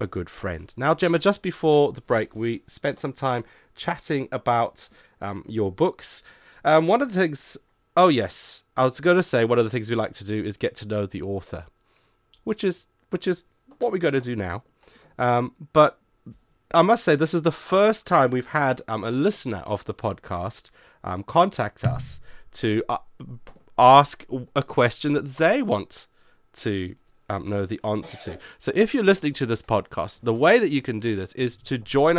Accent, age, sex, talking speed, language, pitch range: British, 30-49, male, 200 wpm, English, 110-155 Hz